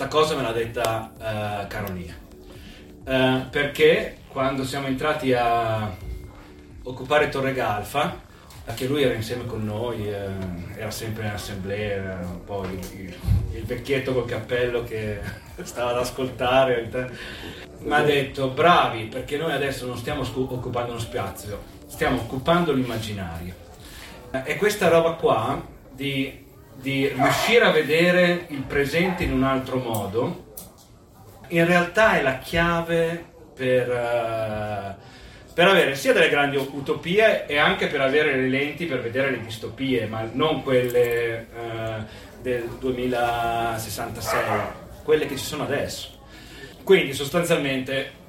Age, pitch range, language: 30-49, 110-145 Hz, Italian